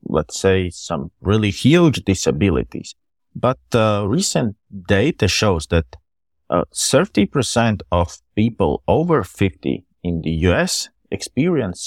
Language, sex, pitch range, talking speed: English, male, 85-110 Hz, 110 wpm